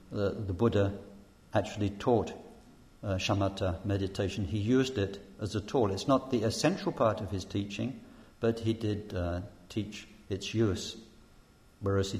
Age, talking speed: 50-69, 150 wpm